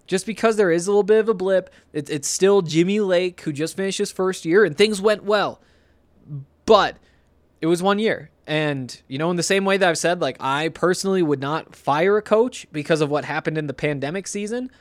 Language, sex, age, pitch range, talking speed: English, male, 20-39, 140-185 Hz, 225 wpm